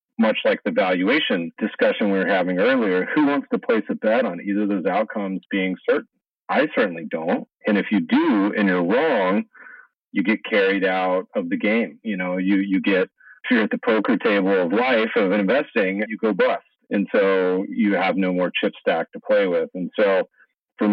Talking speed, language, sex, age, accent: 205 wpm, English, male, 40-59, American